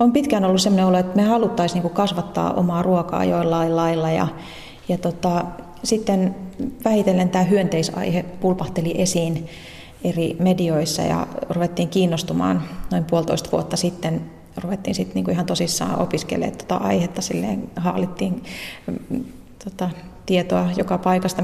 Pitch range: 165-195 Hz